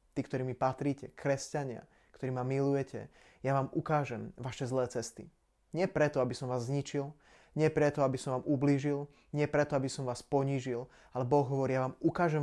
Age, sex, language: 20-39, male, Slovak